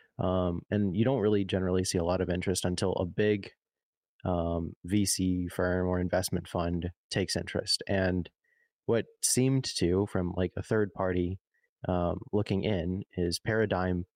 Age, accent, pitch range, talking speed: 20-39, American, 90-105 Hz, 155 wpm